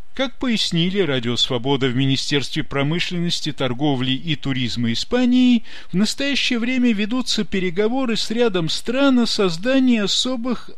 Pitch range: 165-245 Hz